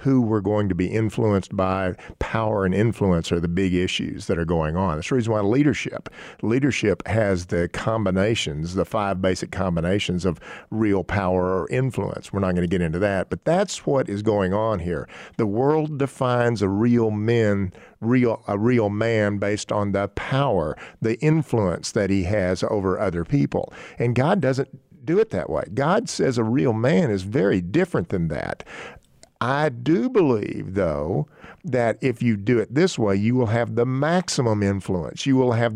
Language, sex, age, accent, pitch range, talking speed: English, male, 50-69, American, 95-125 Hz, 180 wpm